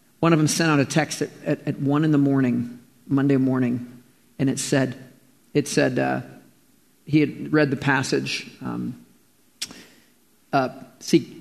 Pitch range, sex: 135-220 Hz, male